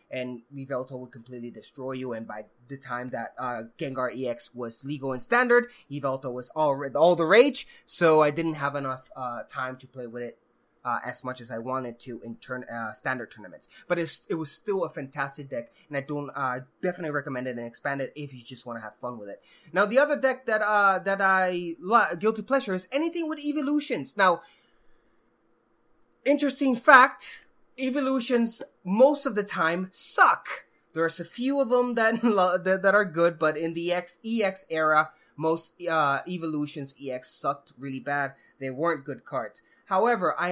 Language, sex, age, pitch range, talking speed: English, male, 20-39, 130-195 Hz, 185 wpm